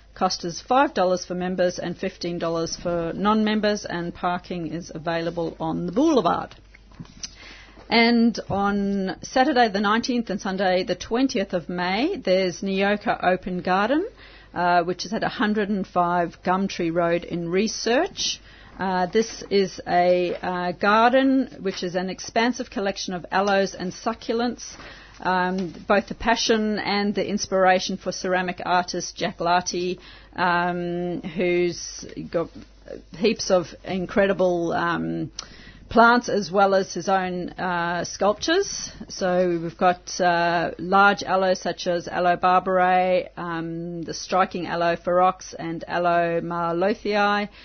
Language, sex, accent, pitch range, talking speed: English, female, Australian, 175-205 Hz, 125 wpm